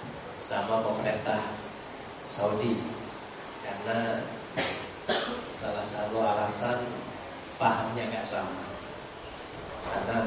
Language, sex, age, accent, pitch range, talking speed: Indonesian, male, 40-59, native, 110-125 Hz, 65 wpm